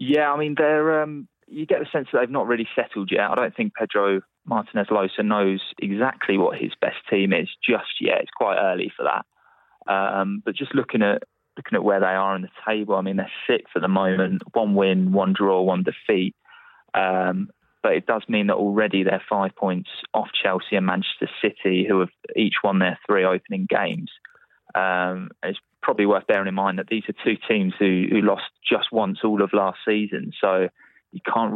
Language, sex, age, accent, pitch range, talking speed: English, male, 20-39, British, 95-110 Hz, 205 wpm